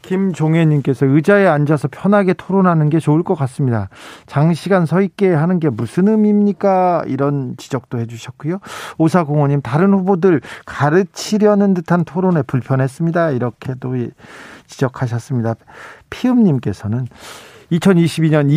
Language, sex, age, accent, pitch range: Korean, male, 40-59, native, 130-175 Hz